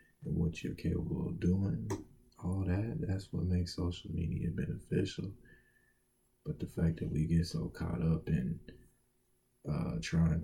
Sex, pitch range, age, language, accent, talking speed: male, 85-95 Hz, 20-39, English, American, 145 wpm